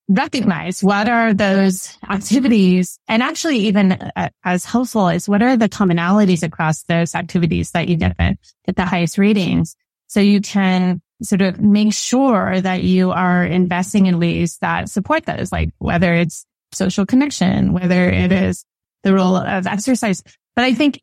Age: 20-39